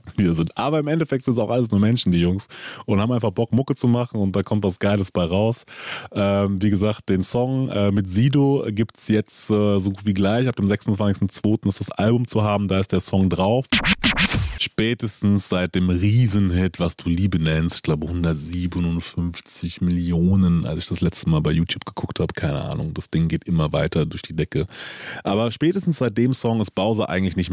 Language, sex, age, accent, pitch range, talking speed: German, male, 30-49, German, 90-115 Hz, 205 wpm